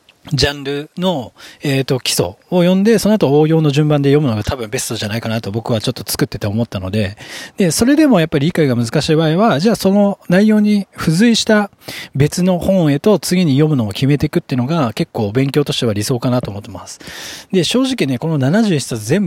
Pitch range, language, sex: 120-180 Hz, Japanese, male